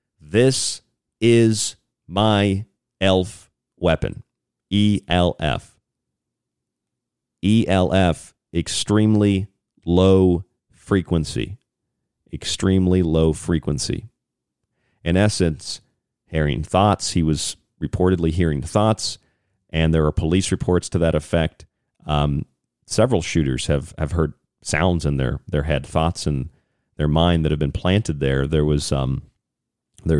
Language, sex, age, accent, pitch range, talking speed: English, male, 40-59, American, 80-95 Hz, 105 wpm